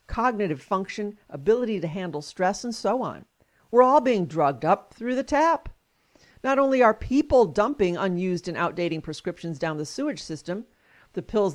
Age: 50-69